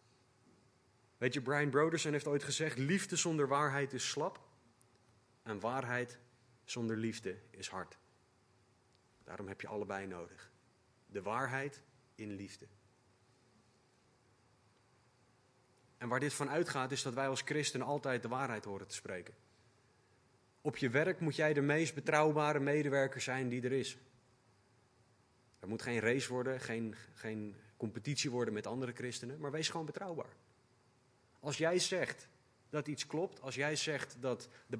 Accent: Dutch